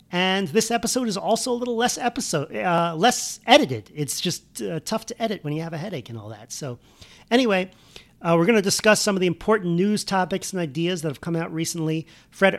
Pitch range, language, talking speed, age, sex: 150-180 Hz, English, 225 wpm, 40-59, male